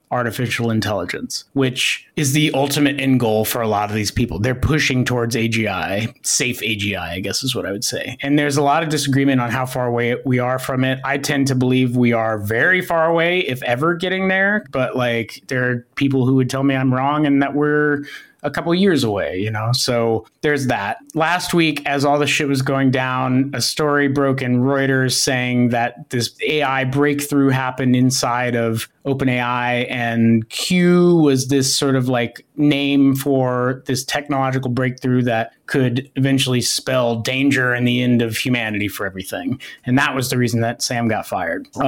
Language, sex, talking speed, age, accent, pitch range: English, male, 195 wpm, 30-49, American, 120-145 Hz